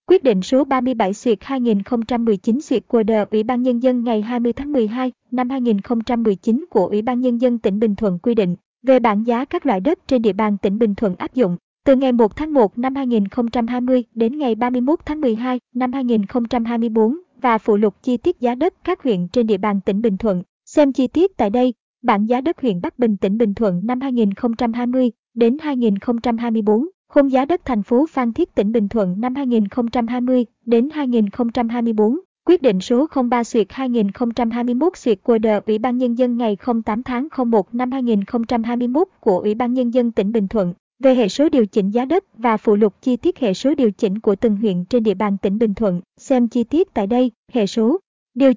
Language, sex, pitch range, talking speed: Vietnamese, male, 220-255 Hz, 200 wpm